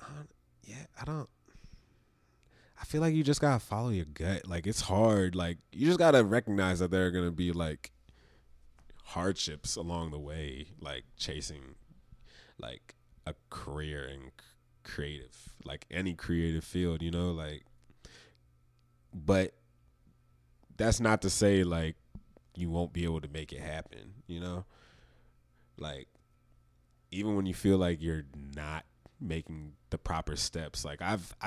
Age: 20-39